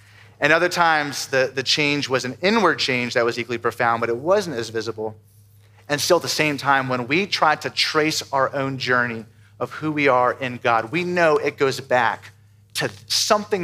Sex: male